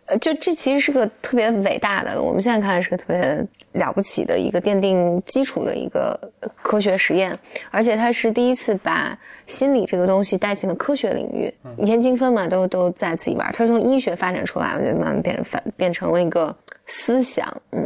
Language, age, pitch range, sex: Chinese, 20-39, 185-250 Hz, female